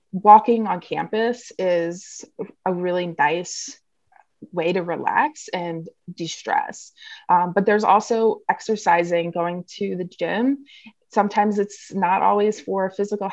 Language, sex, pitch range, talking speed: English, female, 175-225 Hz, 115 wpm